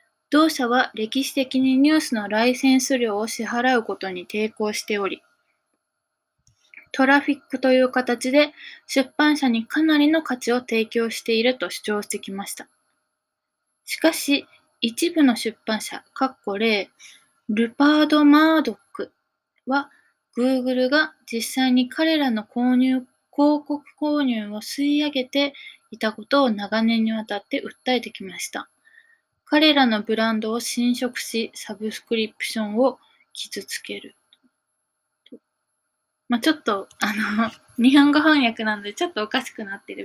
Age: 20-39